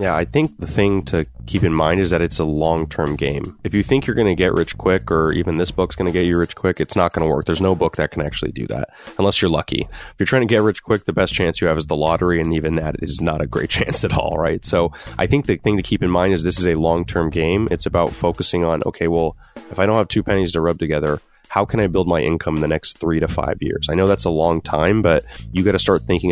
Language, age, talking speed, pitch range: English, 20-39, 305 wpm, 80-95 Hz